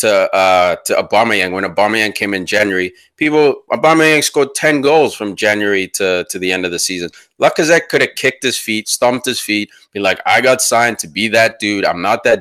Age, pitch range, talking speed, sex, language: 30-49, 105-160 Hz, 215 wpm, male, English